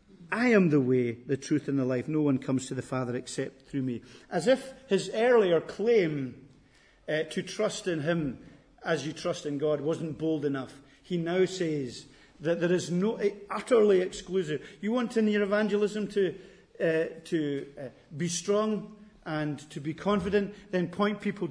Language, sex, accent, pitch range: English, male, British, 145-200 Hz